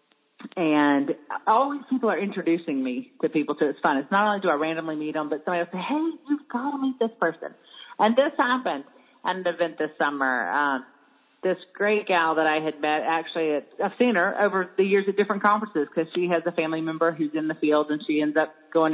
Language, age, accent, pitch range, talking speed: English, 40-59, American, 155-210 Hz, 230 wpm